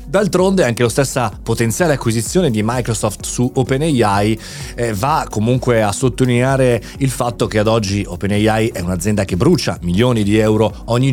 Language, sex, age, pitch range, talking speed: Italian, male, 30-49, 105-135 Hz, 150 wpm